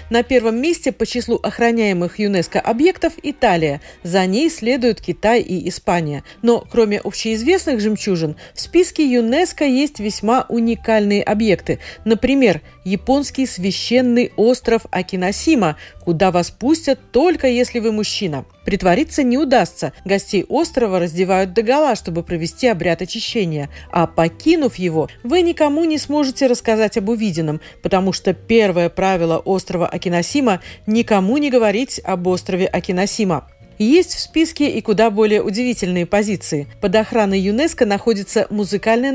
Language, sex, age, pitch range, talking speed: Russian, female, 40-59, 185-250 Hz, 130 wpm